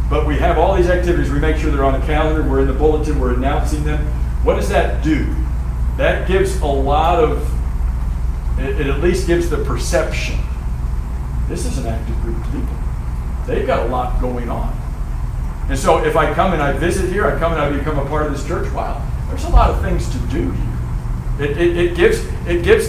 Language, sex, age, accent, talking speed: English, male, 60-79, American, 210 wpm